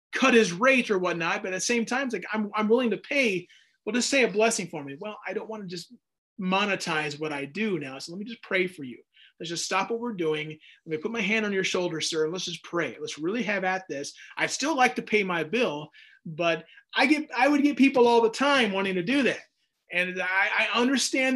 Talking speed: 255 wpm